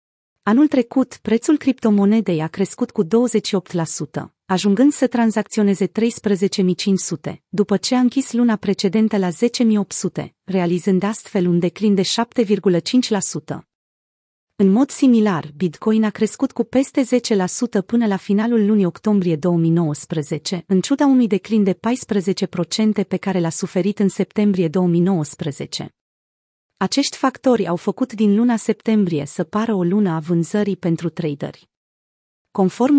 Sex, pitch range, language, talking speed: female, 180-225 Hz, Romanian, 125 wpm